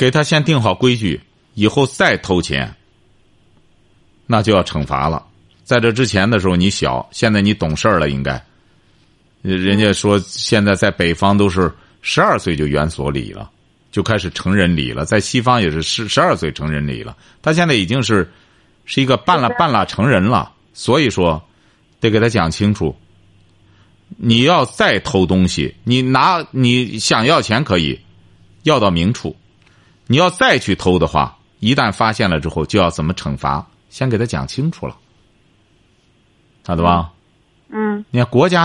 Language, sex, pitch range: Chinese, male, 90-140 Hz